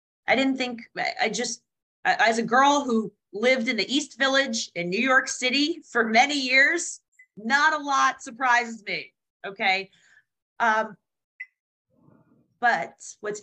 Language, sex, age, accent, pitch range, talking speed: English, female, 30-49, American, 180-235 Hz, 135 wpm